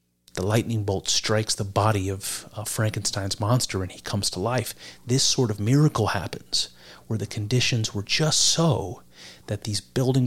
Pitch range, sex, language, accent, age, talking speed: 90-115 Hz, male, English, American, 40-59, 170 wpm